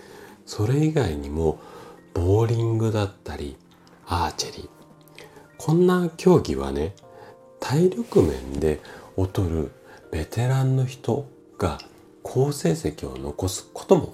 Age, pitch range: 40-59, 80-135 Hz